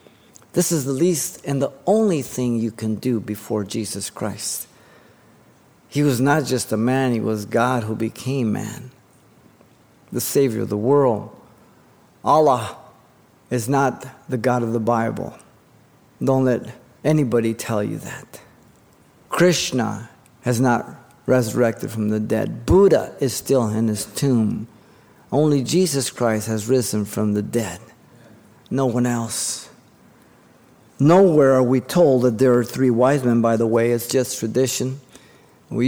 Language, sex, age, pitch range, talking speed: English, male, 50-69, 115-135 Hz, 145 wpm